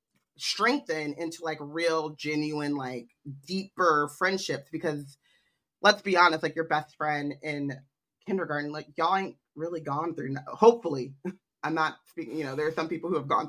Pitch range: 140-160 Hz